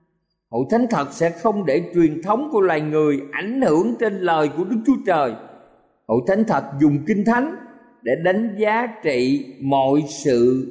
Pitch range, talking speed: 135-195 Hz, 175 wpm